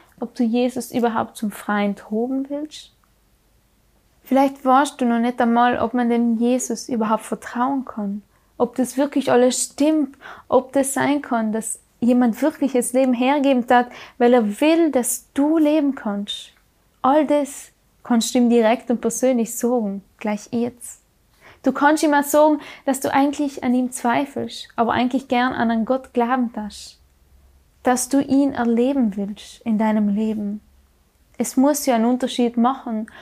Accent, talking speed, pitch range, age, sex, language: German, 160 wpm, 230-275 Hz, 10-29, female, German